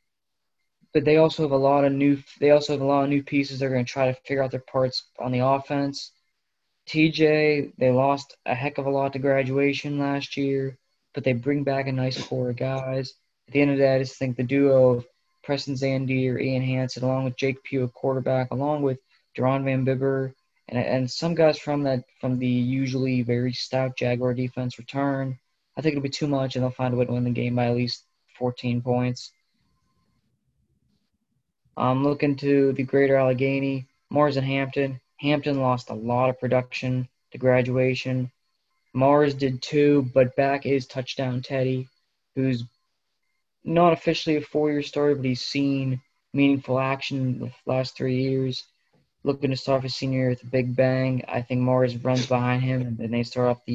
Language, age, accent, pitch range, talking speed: English, 20-39, American, 125-140 Hz, 200 wpm